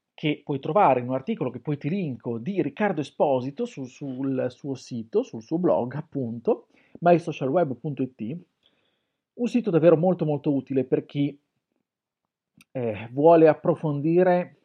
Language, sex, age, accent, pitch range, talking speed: Italian, male, 40-59, native, 135-185 Hz, 135 wpm